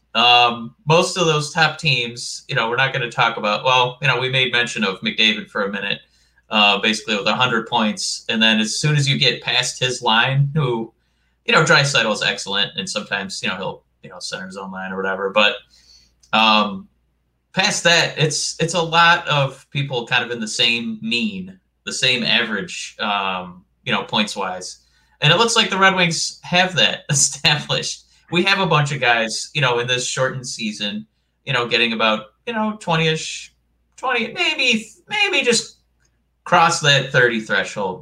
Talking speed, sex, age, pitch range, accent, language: 190 wpm, male, 20-39, 110-160 Hz, American, English